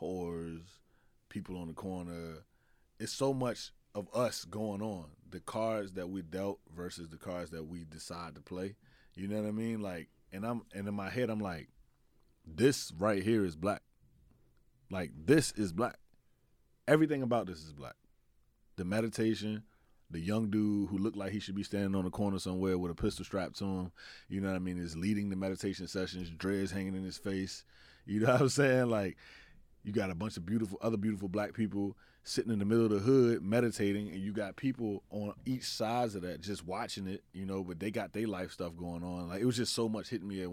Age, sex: 20-39, male